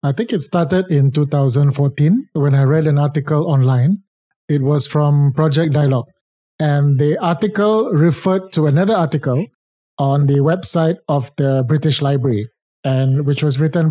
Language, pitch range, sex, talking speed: English, 140-175 Hz, male, 150 wpm